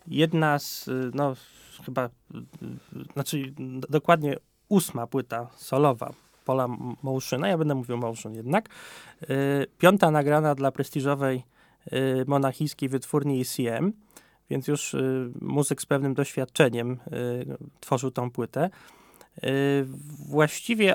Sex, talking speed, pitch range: male, 95 wpm, 130-155 Hz